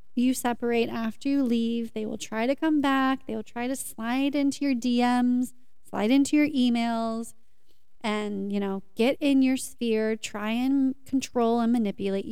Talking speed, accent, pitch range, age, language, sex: 170 wpm, American, 220-260 Hz, 30-49, English, female